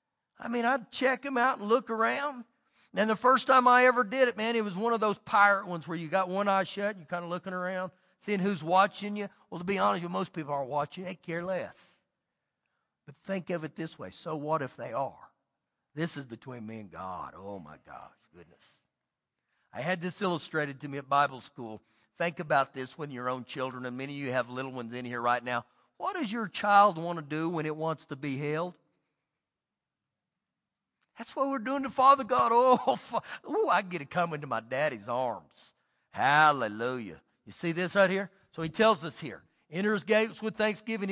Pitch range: 160-245 Hz